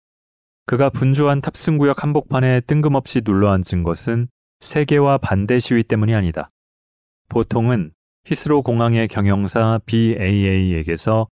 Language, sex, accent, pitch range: Korean, male, native, 90-125 Hz